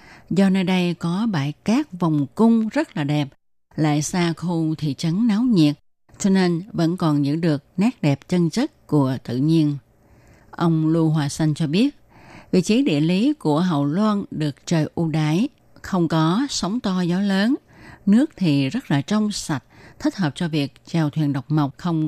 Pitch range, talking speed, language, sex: 150-195 Hz, 190 wpm, Vietnamese, female